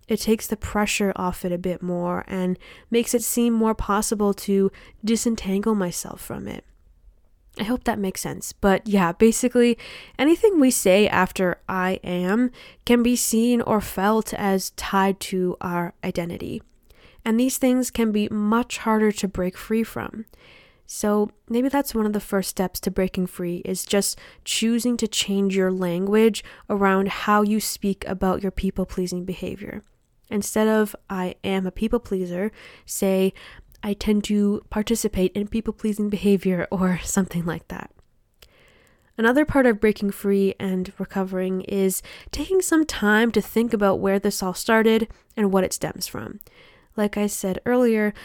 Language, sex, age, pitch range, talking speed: English, female, 20-39, 190-225 Hz, 155 wpm